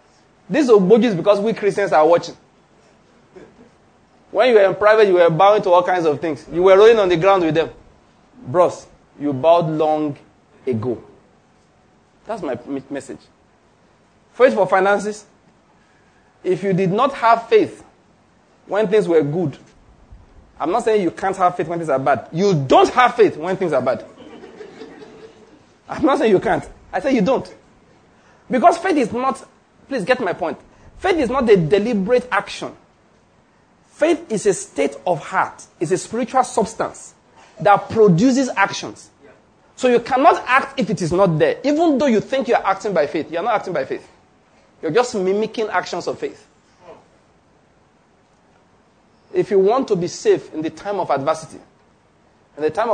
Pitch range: 170-245 Hz